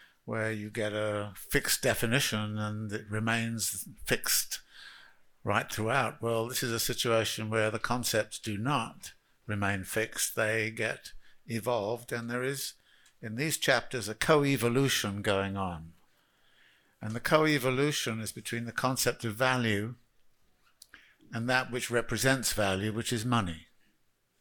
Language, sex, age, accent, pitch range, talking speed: English, male, 60-79, British, 105-125 Hz, 135 wpm